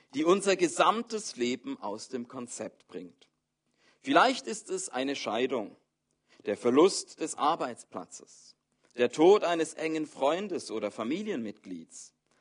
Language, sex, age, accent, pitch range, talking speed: German, male, 50-69, German, 115-190 Hz, 115 wpm